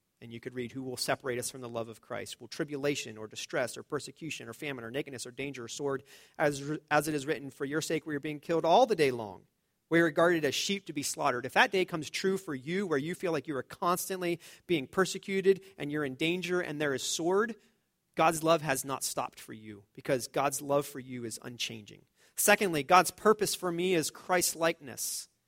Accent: American